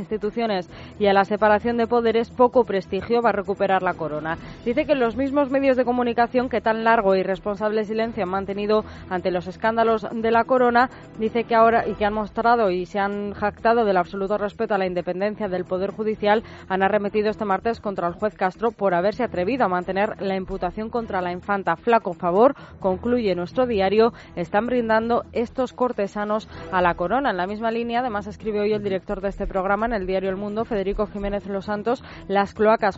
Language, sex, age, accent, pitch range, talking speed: Spanish, female, 20-39, Spanish, 195-230 Hz, 195 wpm